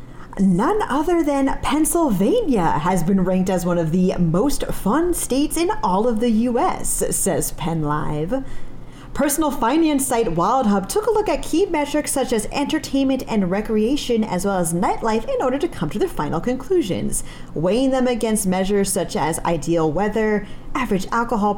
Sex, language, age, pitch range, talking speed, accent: female, English, 30-49, 180-265 Hz, 160 wpm, American